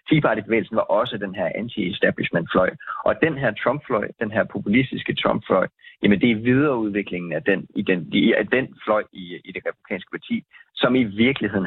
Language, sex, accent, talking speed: Danish, male, native, 170 wpm